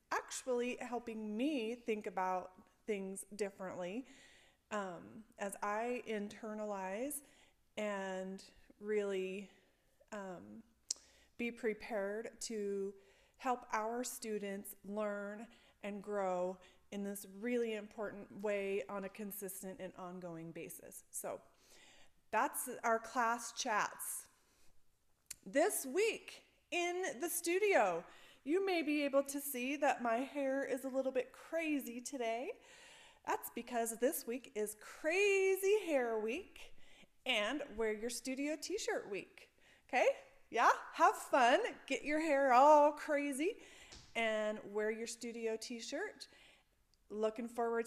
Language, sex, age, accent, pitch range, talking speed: English, female, 30-49, American, 210-295 Hz, 110 wpm